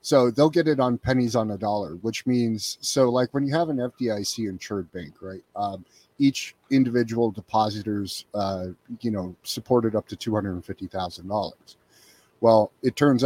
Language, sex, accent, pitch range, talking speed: English, male, American, 105-125 Hz, 180 wpm